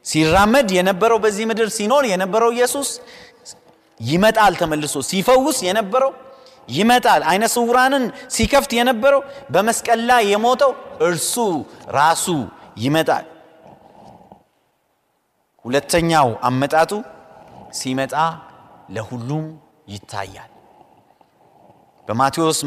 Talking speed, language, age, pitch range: 70 wpm, Amharic, 30-49, 155-220 Hz